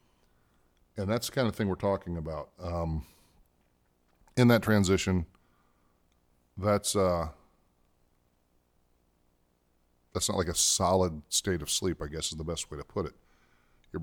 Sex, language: male, English